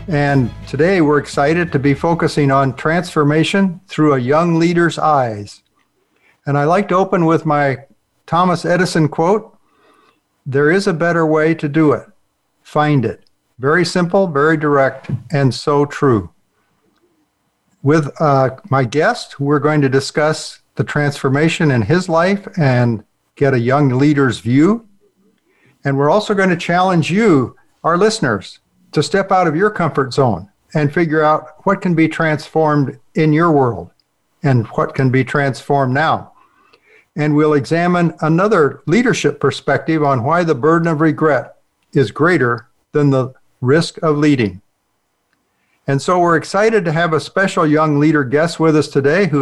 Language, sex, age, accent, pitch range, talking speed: English, male, 50-69, American, 140-175 Hz, 155 wpm